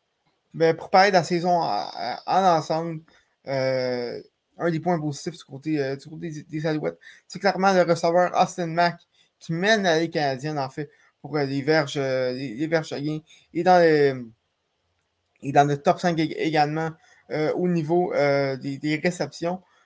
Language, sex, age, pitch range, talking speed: French, male, 20-39, 140-180 Hz, 180 wpm